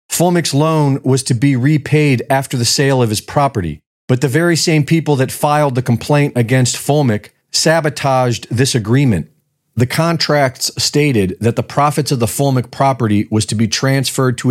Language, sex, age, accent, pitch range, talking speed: English, male, 40-59, American, 120-145 Hz, 170 wpm